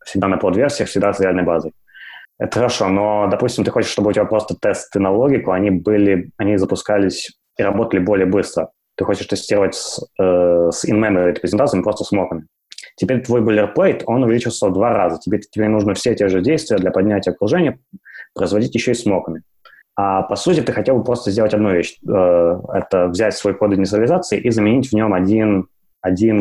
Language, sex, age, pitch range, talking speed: Russian, male, 20-39, 95-115 Hz, 190 wpm